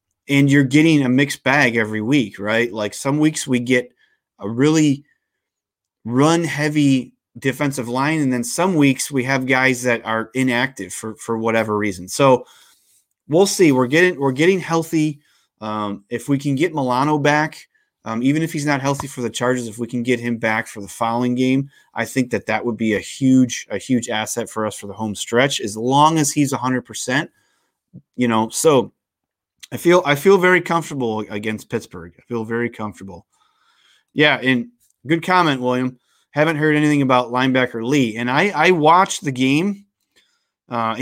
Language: English